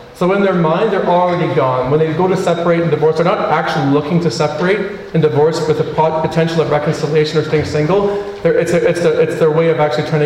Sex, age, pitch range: male, 40-59, 135-155 Hz